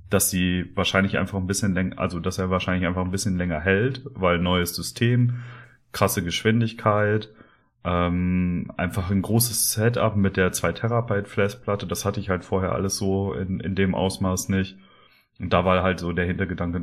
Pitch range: 90-110 Hz